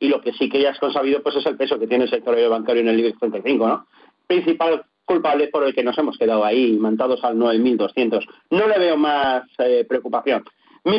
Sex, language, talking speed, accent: male, Spanish, 225 wpm, Spanish